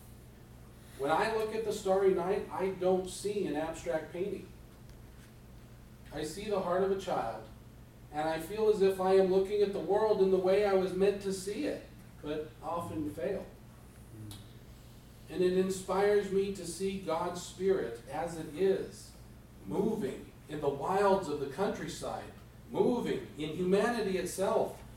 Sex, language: male, English